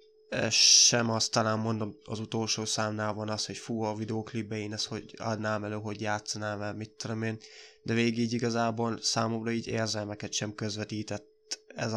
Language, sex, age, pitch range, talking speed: Hungarian, male, 20-39, 110-150 Hz, 165 wpm